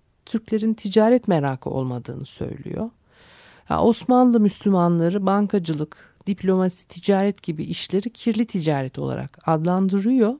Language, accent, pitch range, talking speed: Turkish, native, 165-215 Hz, 100 wpm